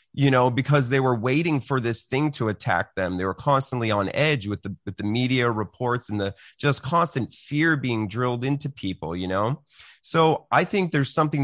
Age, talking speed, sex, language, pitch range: 30-49, 205 wpm, male, English, 125-150 Hz